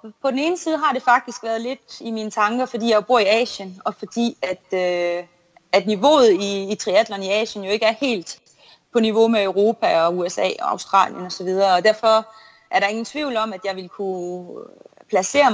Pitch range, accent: 190-230 Hz, native